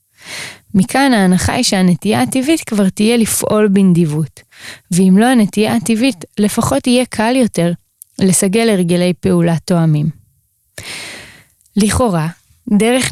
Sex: female